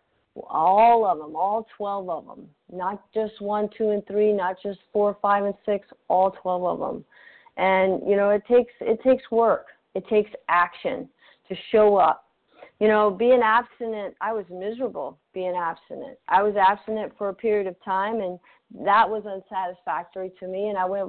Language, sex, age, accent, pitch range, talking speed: English, female, 40-59, American, 190-220 Hz, 180 wpm